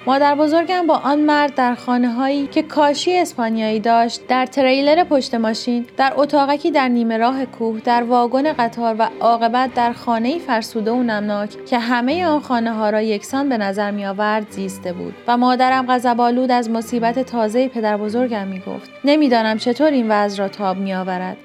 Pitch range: 215-265 Hz